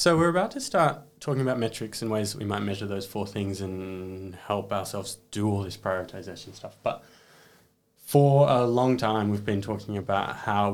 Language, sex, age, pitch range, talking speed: English, male, 20-39, 100-120 Hz, 195 wpm